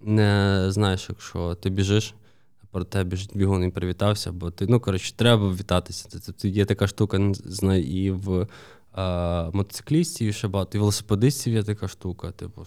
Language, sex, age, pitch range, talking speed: Ukrainian, male, 20-39, 95-110 Hz, 165 wpm